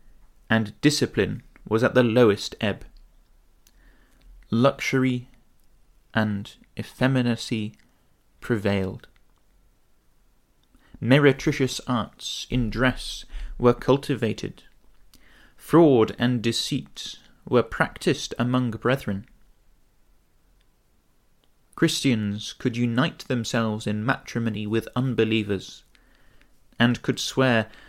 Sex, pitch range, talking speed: male, 110-130 Hz, 75 wpm